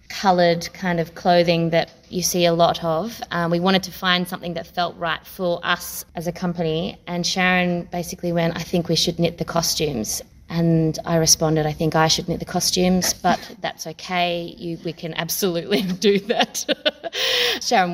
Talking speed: 185 wpm